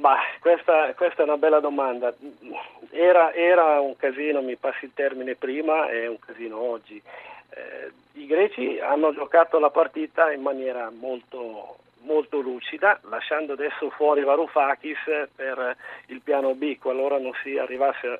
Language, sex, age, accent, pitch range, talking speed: Italian, male, 40-59, native, 135-175 Hz, 140 wpm